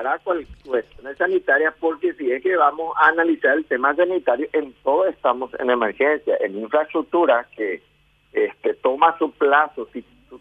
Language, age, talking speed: Spanish, 50-69, 165 wpm